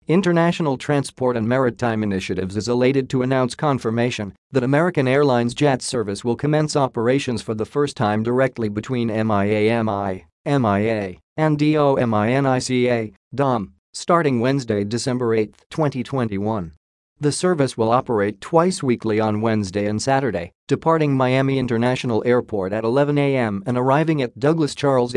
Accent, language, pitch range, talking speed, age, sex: American, English, 110-140 Hz, 135 wpm, 40-59, male